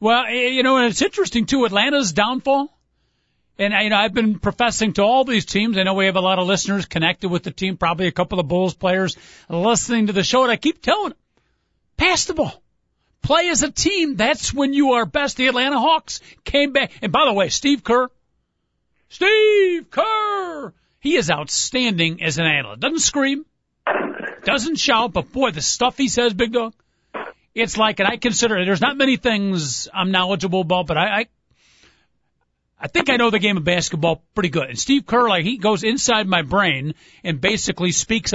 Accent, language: American, English